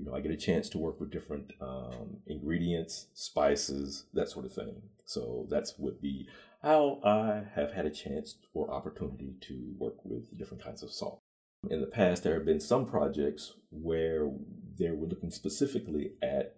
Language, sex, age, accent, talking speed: English, male, 50-69, American, 180 wpm